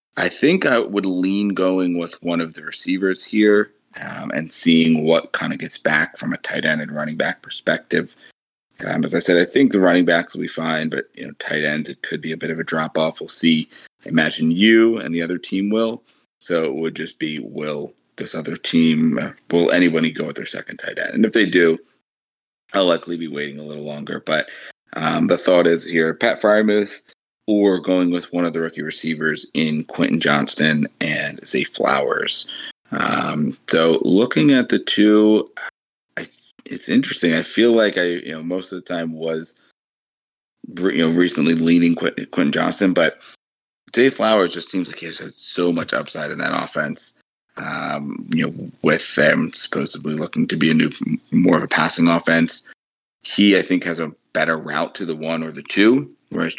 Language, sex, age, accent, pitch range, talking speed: English, male, 30-49, American, 80-95 Hz, 195 wpm